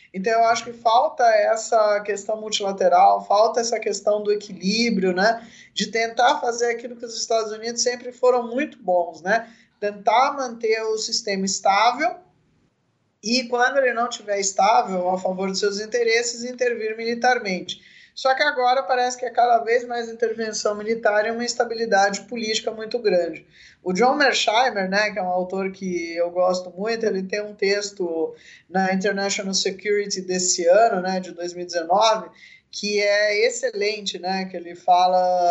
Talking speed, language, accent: 155 wpm, Portuguese, Brazilian